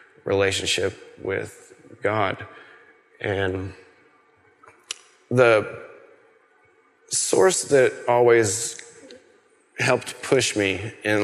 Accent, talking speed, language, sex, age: American, 65 wpm, English, male, 30-49